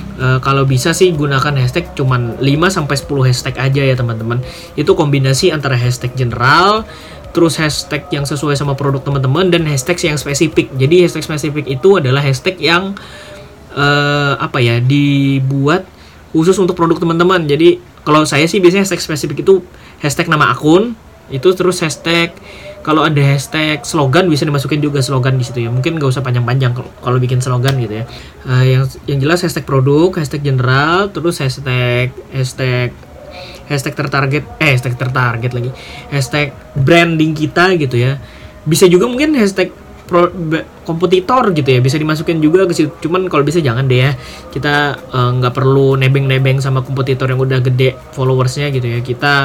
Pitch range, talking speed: 130-165 Hz, 160 wpm